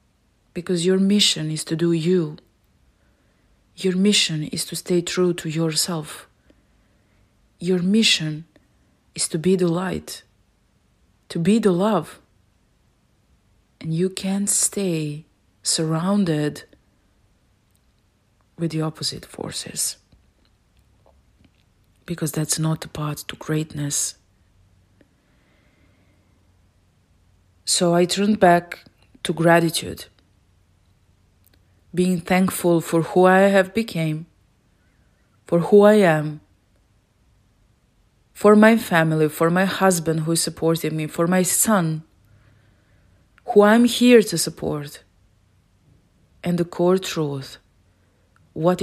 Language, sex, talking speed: English, female, 100 wpm